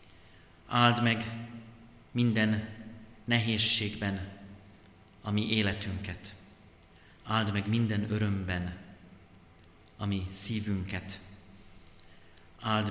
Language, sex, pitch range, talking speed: Hungarian, male, 85-110 Hz, 60 wpm